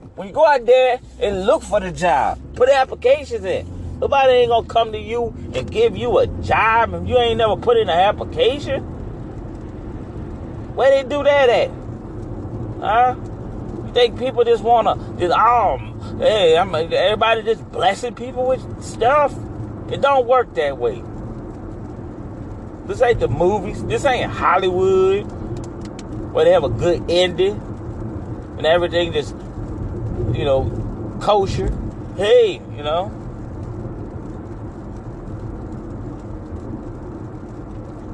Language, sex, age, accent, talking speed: English, male, 30-49, American, 125 wpm